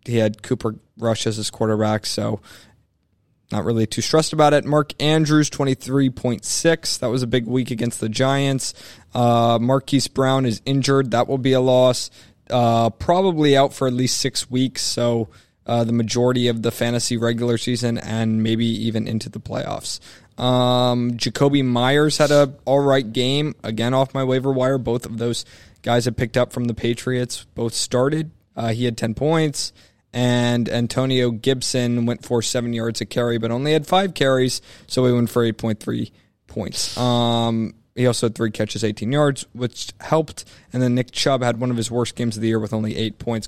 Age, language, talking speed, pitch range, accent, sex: 20-39, English, 185 wpm, 115-135 Hz, American, male